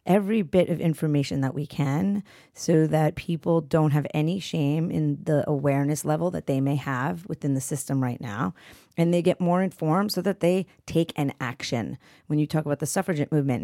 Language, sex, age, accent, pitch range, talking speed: English, female, 30-49, American, 140-165 Hz, 200 wpm